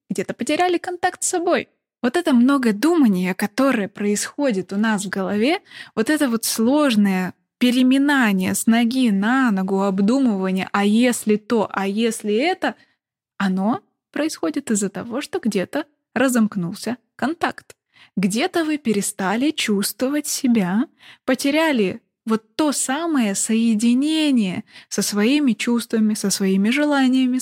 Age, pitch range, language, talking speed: 20-39, 205-260 Hz, Russian, 120 wpm